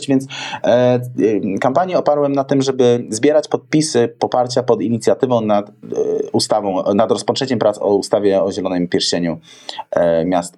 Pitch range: 115-155 Hz